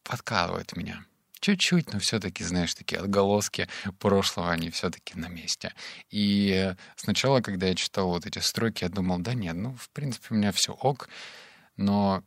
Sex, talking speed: male, 160 wpm